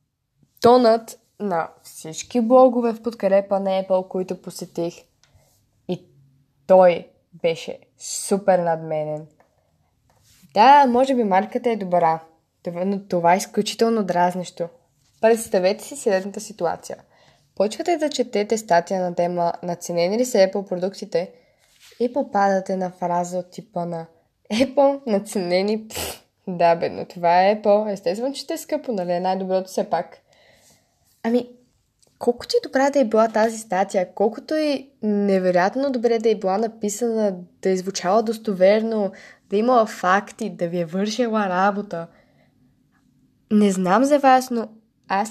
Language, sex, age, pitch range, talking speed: Bulgarian, female, 20-39, 180-245 Hz, 135 wpm